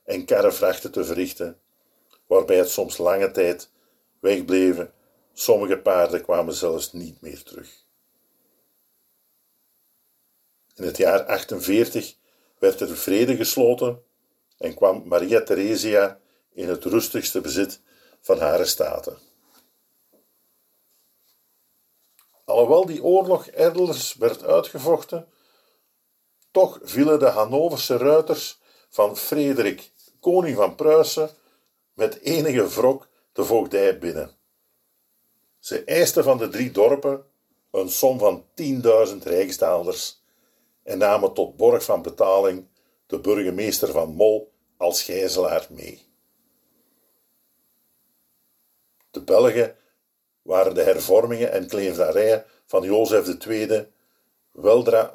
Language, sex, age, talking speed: Dutch, male, 50-69, 100 wpm